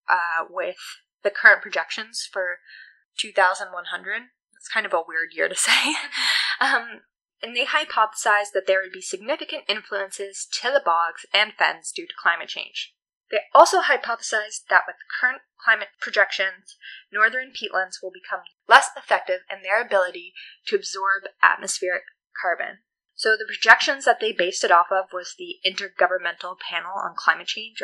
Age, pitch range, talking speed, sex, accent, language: 10-29, 195-290 Hz, 155 wpm, female, American, English